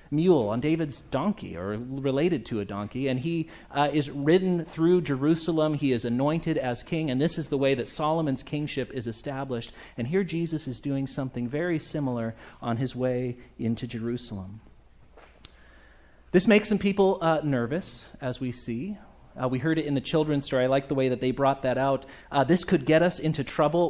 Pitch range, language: 135-185 Hz, English